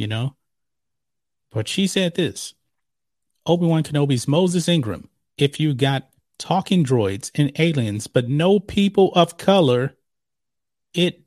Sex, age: male, 40-59